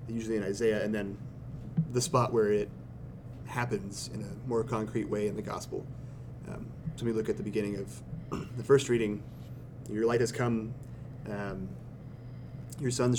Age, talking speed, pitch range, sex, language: 30-49, 165 wpm, 105-125 Hz, male, English